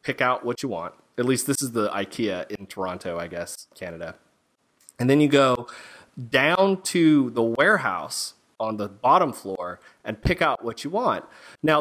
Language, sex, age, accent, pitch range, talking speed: English, male, 30-49, American, 110-150 Hz, 180 wpm